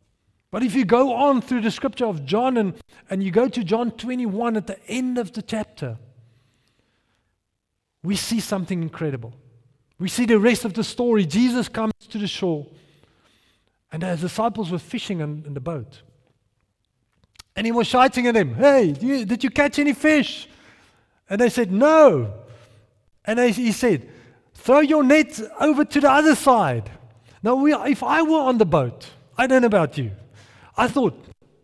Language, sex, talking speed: English, male, 170 wpm